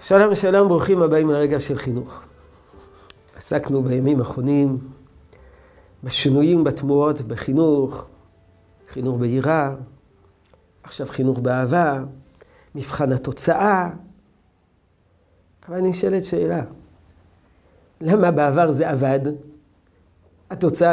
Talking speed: 85 wpm